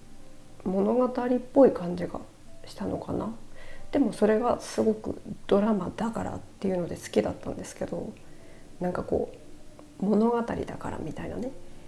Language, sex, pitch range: Japanese, female, 180-240 Hz